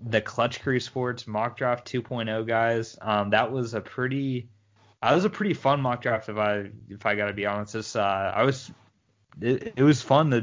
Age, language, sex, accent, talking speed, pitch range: 20-39, English, male, American, 215 wpm, 105-115 Hz